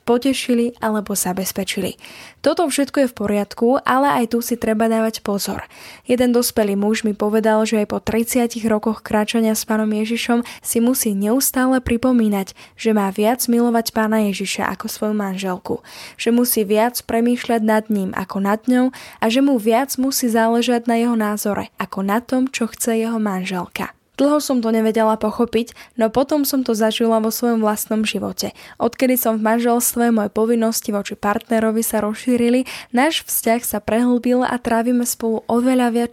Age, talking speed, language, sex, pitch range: 10-29, 170 wpm, Slovak, female, 215-240 Hz